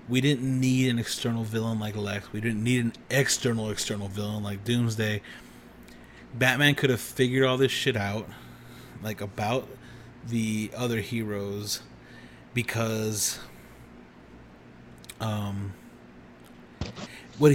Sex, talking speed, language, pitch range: male, 115 wpm, English, 100-125 Hz